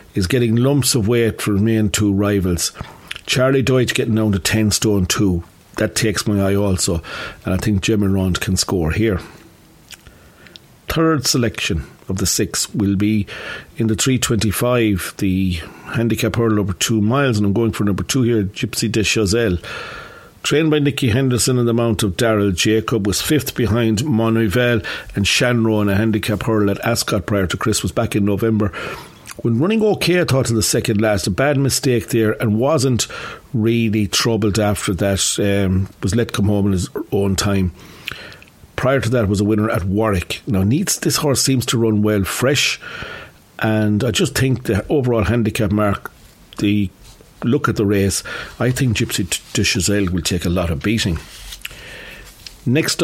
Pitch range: 100-120 Hz